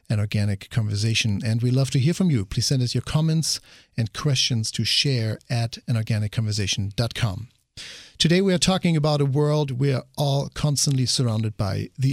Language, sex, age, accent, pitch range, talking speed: English, male, 50-69, German, 115-145 Hz, 175 wpm